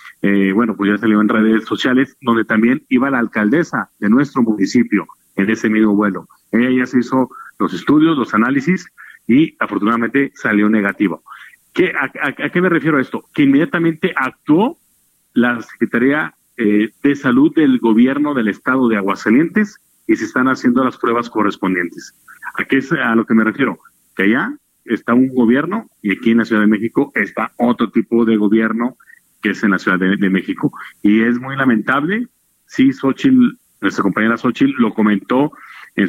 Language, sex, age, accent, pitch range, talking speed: Spanish, male, 40-59, Mexican, 105-135 Hz, 180 wpm